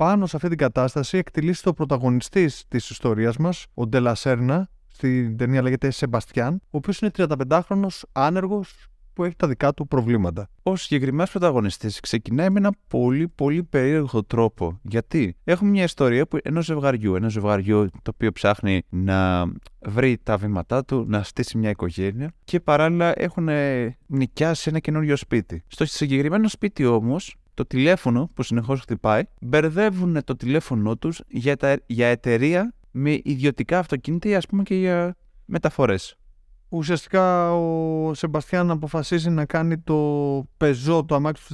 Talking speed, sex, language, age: 145 wpm, male, Greek, 20-39